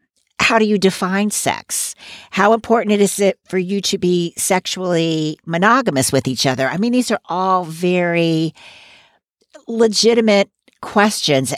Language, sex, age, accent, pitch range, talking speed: English, female, 50-69, American, 150-205 Hz, 135 wpm